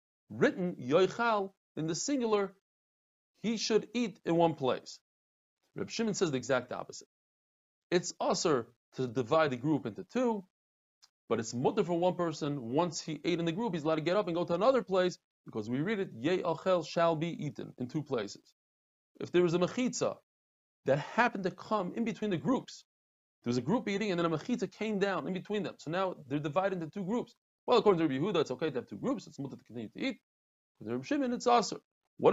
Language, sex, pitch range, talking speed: English, male, 140-205 Hz, 210 wpm